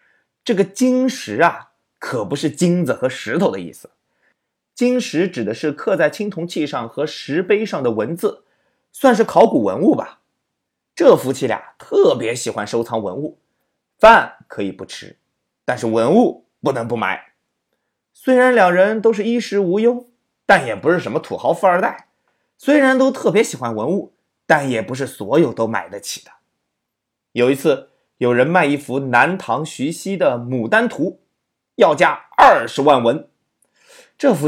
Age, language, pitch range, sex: 30-49, Chinese, 150-250 Hz, male